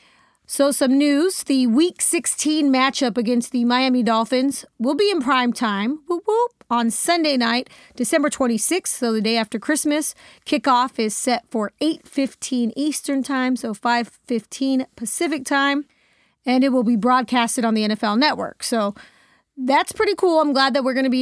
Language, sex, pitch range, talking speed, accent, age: English, female, 235-280 Hz, 160 wpm, American, 30-49